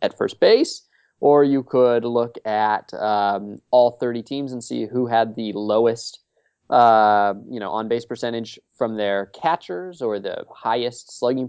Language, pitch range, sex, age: English, 105-130 Hz, male, 20-39